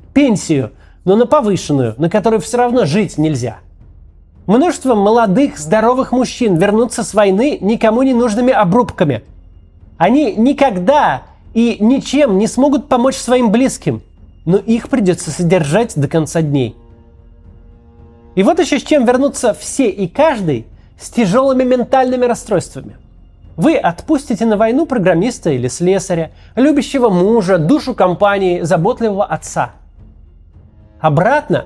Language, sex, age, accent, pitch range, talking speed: Russian, male, 30-49, native, 150-240 Hz, 120 wpm